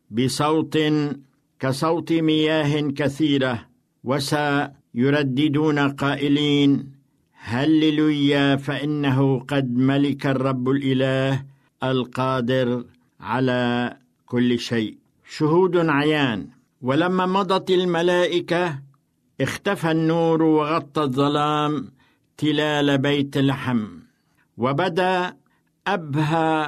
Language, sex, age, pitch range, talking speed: Arabic, male, 60-79, 135-155 Hz, 65 wpm